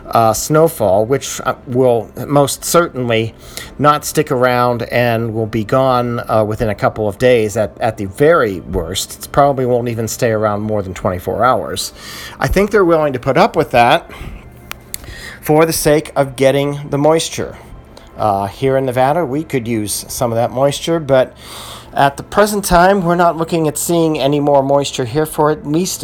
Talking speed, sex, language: 180 wpm, male, English